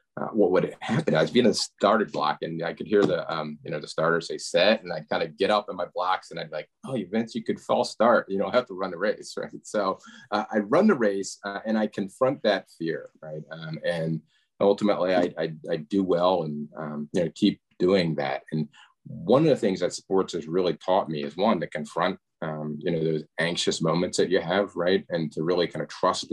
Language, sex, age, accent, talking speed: English, male, 30-49, American, 250 wpm